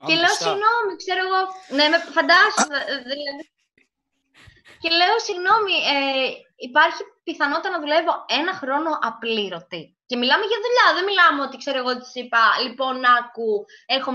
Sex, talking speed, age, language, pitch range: female, 145 wpm, 20-39, Greek, 225-365 Hz